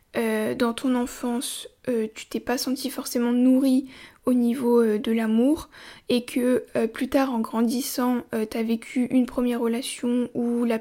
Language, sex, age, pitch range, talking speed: French, female, 20-39, 230-265 Hz, 170 wpm